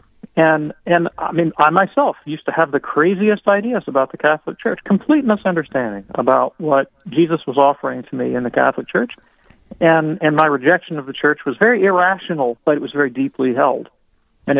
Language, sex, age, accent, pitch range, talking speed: English, male, 40-59, American, 130-165 Hz, 190 wpm